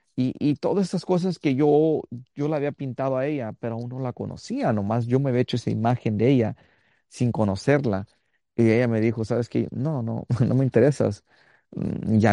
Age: 40-59